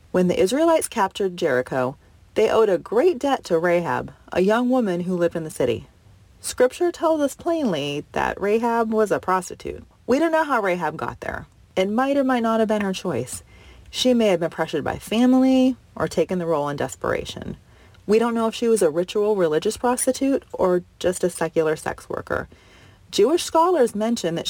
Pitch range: 165-235 Hz